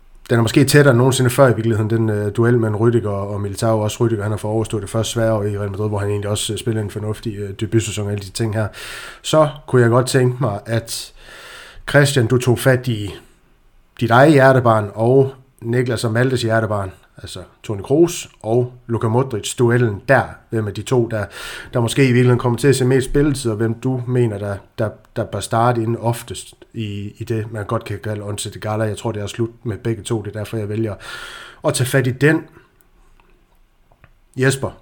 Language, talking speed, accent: Danish, 220 wpm, native